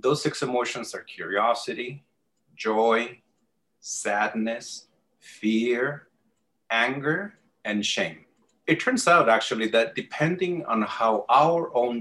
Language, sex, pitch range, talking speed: English, male, 105-130 Hz, 105 wpm